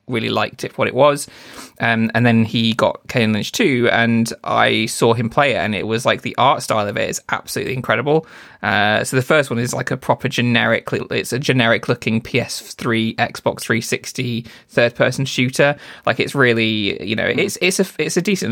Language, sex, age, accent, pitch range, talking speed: English, male, 20-39, British, 110-125 Hz, 205 wpm